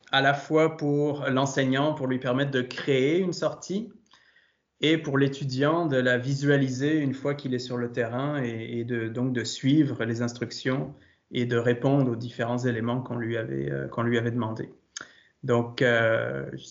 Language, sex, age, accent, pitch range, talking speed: French, male, 20-39, French, 120-145 Hz, 180 wpm